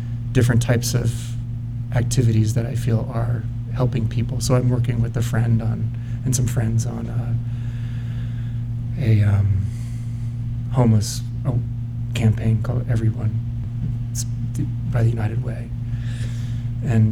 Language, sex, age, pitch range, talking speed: English, male, 30-49, 115-120 Hz, 120 wpm